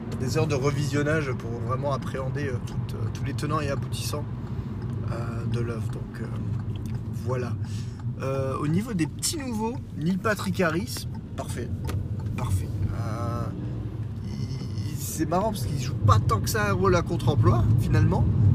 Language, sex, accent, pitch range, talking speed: French, male, French, 115-140 Hz, 155 wpm